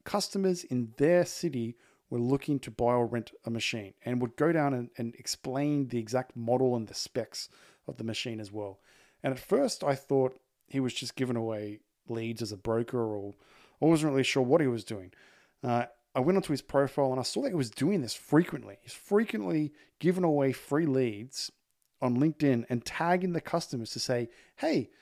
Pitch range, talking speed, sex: 120-145 Hz, 200 wpm, male